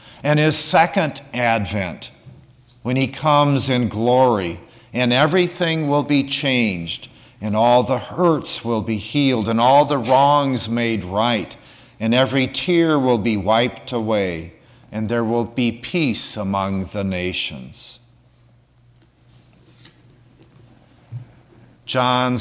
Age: 50-69